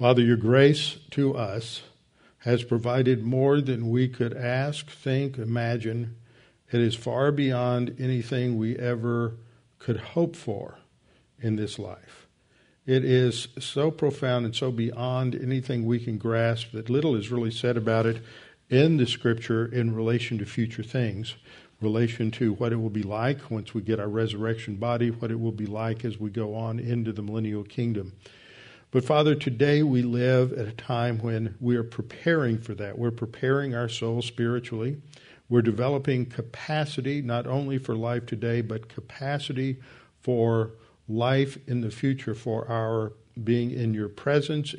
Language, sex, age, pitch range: English, male, 50-69, 115-130 Hz